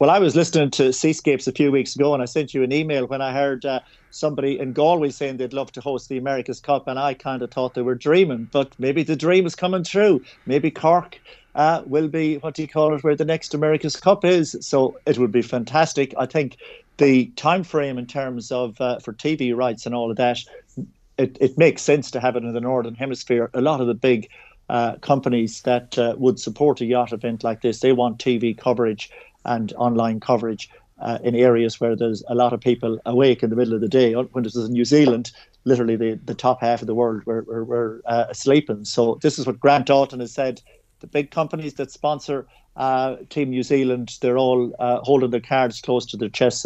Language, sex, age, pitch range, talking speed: English, male, 50-69, 120-140 Hz, 230 wpm